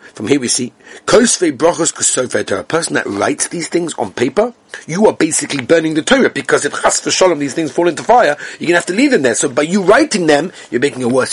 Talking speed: 230 wpm